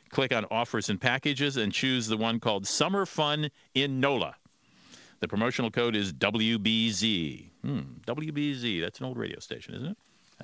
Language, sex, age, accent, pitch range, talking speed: English, male, 50-69, American, 100-135 Hz, 155 wpm